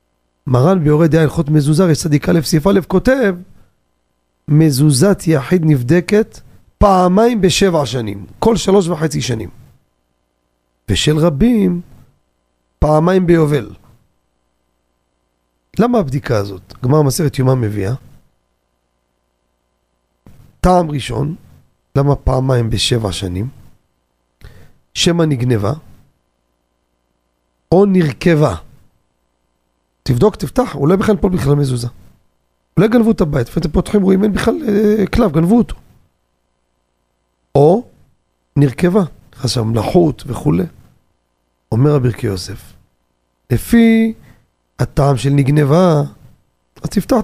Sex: male